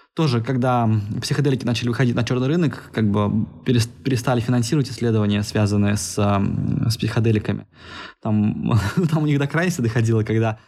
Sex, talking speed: male, 140 wpm